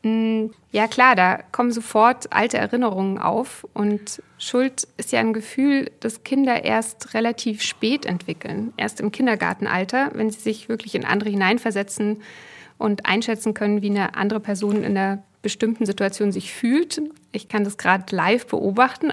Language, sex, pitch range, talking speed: German, female, 205-240 Hz, 155 wpm